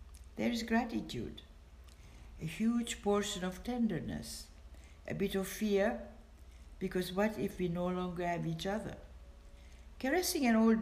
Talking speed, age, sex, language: 135 wpm, 60-79, female, English